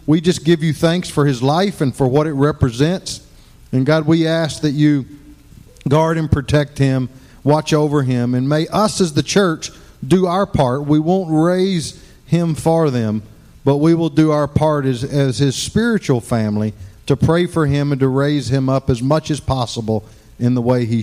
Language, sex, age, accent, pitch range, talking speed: English, male, 50-69, American, 125-160 Hz, 195 wpm